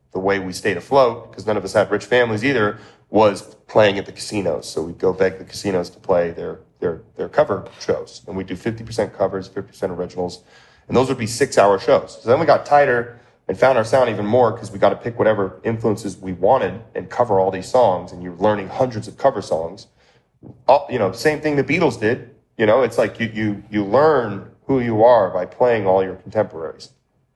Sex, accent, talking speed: male, American, 220 wpm